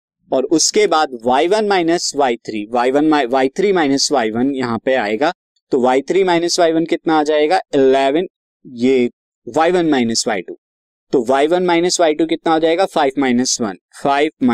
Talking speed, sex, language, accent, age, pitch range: 120 wpm, male, Hindi, native, 20-39, 130-170 Hz